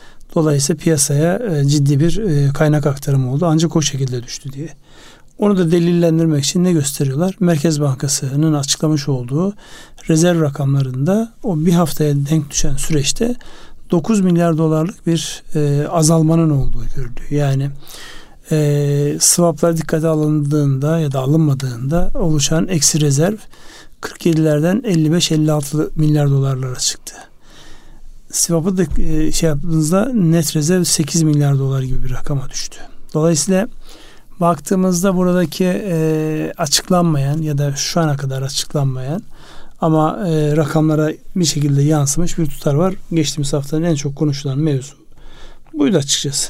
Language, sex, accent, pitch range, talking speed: Turkish, male, native, 145-170 Hz, 120 wpm